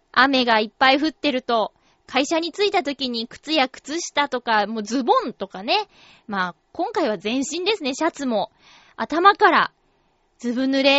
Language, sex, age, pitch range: Japanese, female, 20-39, 255-375 Hz